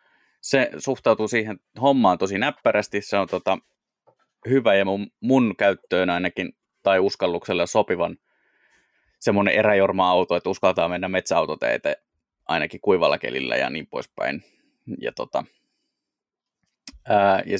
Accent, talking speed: native, 115 wpm